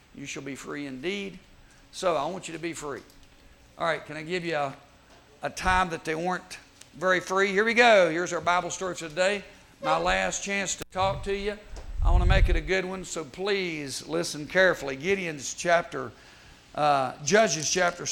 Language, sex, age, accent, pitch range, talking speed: English, male, 50-69, American, 155-200 Hz, 190 wpm